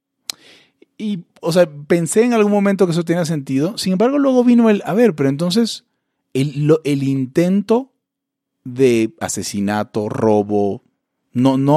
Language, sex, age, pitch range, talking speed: Italian, male, 30-49, 125-180 Hz, 145 wpm